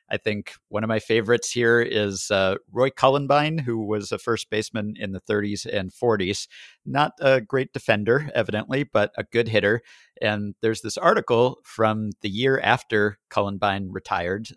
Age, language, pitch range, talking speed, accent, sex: 50-69, English, 100-130 Hz, 165 wpm, American, male